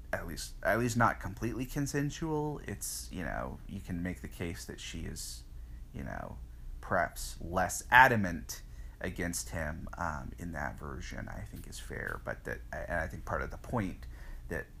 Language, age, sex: English, 30-49, male